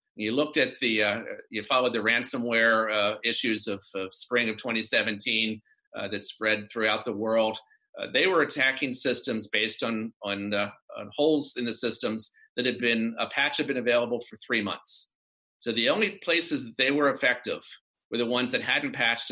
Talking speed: 190 wpm